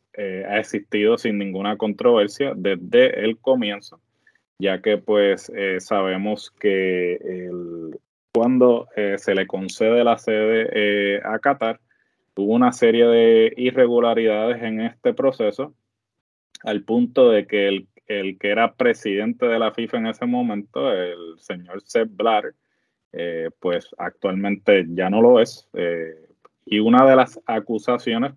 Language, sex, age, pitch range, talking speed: Spanish, male, 20-39, 95-115 Hz, 140 wpm